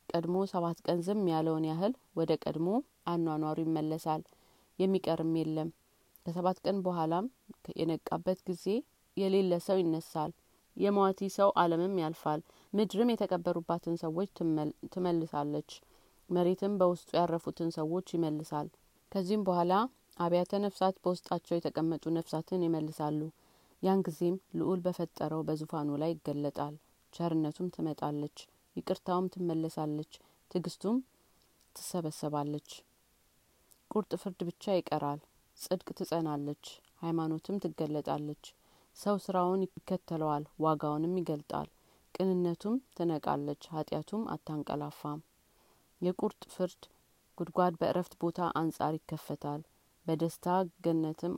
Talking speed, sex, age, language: 90 wpm, female, 30-49, Amharic